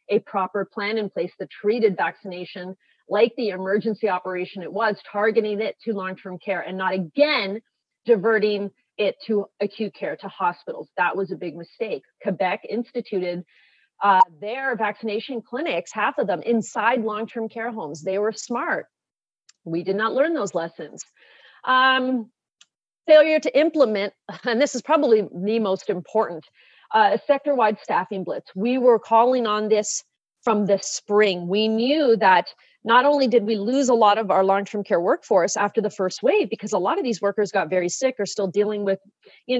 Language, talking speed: English, 170 wpm